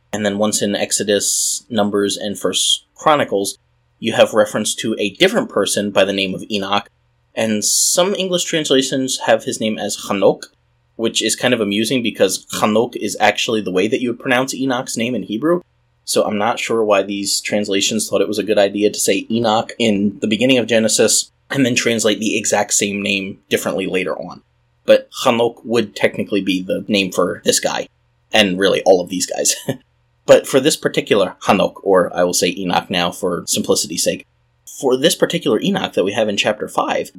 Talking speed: 195 wpm